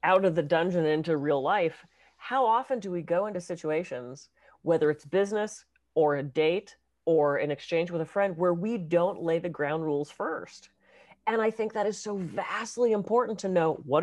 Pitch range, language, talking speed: 155-200 Hz, English, 195 wpm